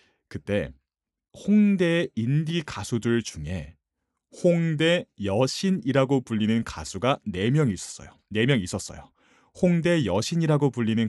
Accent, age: native, 30-49